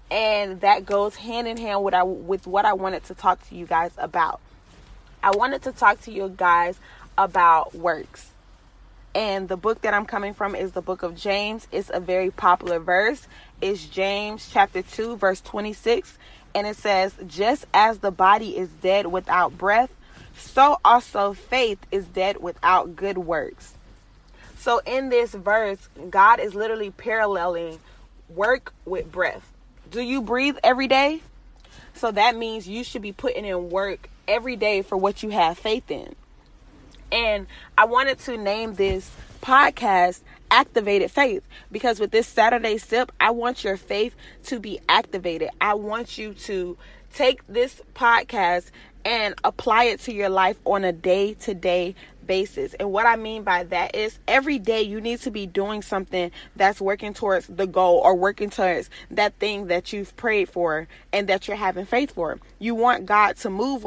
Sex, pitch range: female, 185-225 Hz